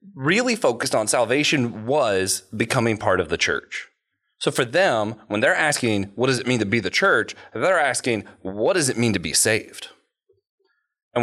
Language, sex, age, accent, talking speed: English, male, 30-49, American, 180 wpm